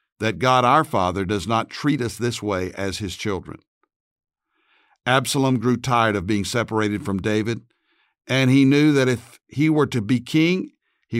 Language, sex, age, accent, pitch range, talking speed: English, male, 60-79, American, 110-135 Hz, 170 wpm